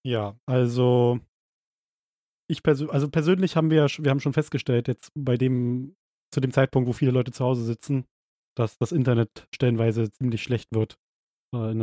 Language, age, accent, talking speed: German, 20-39, German, 160 wpm